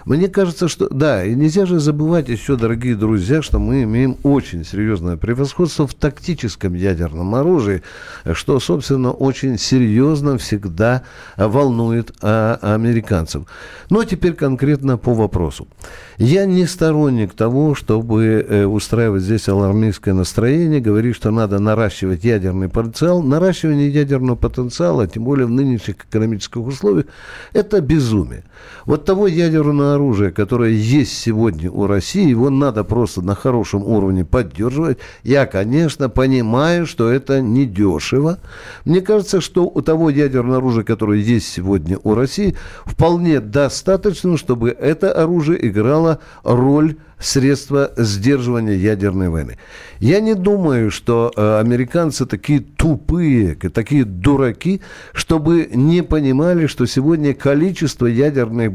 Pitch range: 110-155 Hz